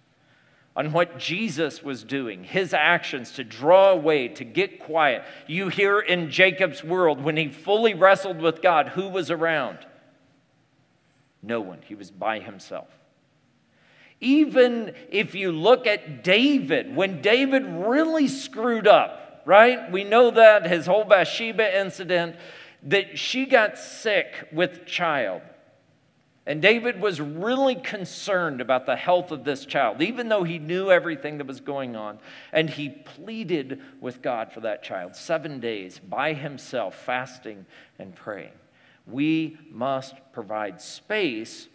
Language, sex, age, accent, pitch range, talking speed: English, male, 40-59, American, 145-210 Hz, 140 wpm